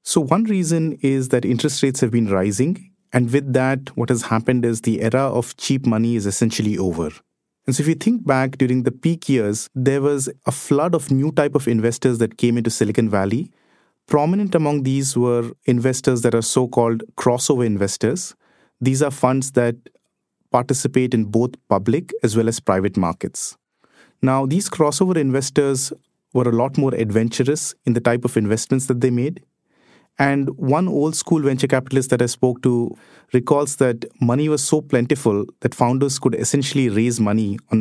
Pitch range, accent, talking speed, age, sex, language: 115-145 Hz, Indian, 175 wpm, 30-49, male, English